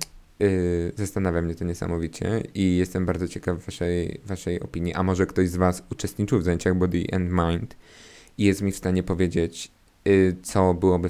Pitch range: 85-95 Hz